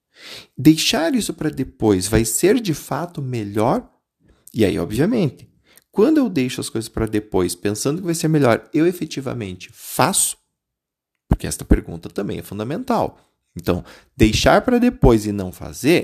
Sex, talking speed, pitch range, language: male, 150 wpm, 110-180 Hz, Portuguese